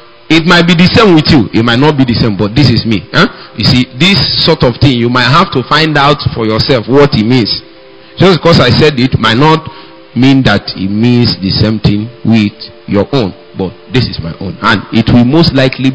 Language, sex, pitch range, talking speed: English, male, 95-130 Hz, 235 wpm